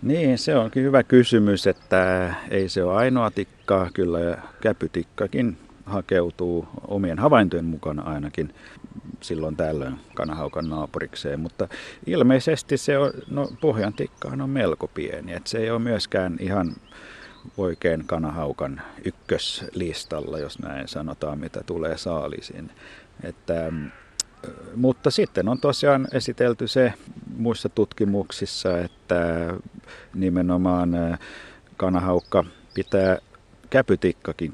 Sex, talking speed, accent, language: male, 100 wpm, native, Finnish